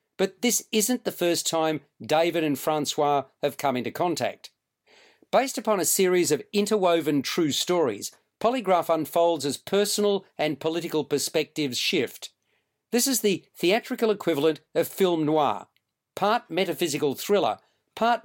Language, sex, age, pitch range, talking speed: English, male, 50-69, 150-200 Hz, 135 wpm